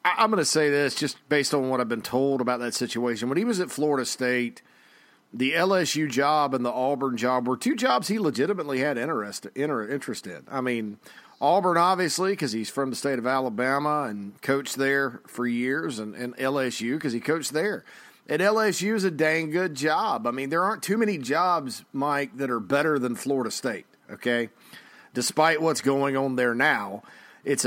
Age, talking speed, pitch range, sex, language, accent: 40-59, 195 wpm, 125-160 Hz, male, English, American